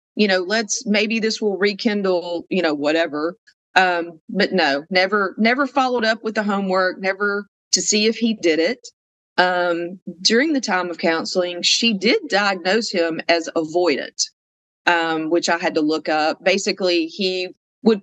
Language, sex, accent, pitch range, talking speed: English, female, American, 165-220 Hz, 160 wpm